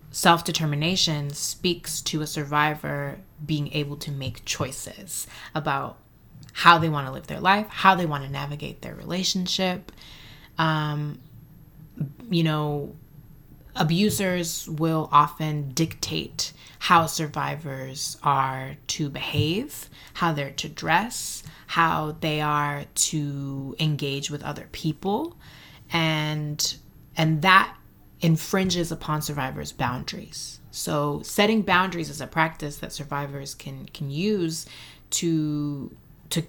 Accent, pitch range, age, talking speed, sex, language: American, 145-170 Hz, 20-39, 115 wpm, female, English